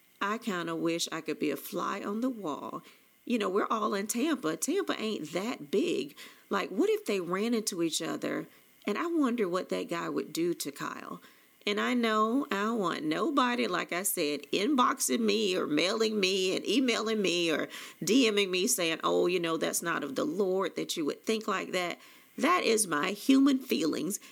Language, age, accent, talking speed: English, 40-59, American, 195 wpm